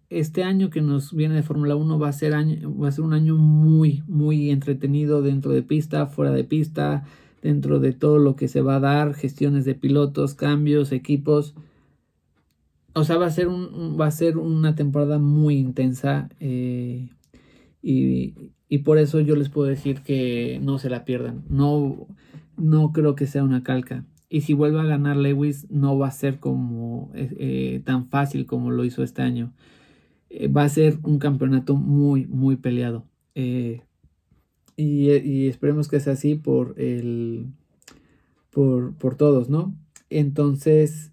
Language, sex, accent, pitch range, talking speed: Spanish, male, Mexican, 130-150 Hz, 170 wpm